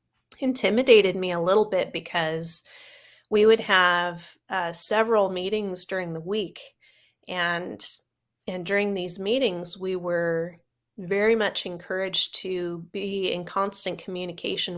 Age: 30-49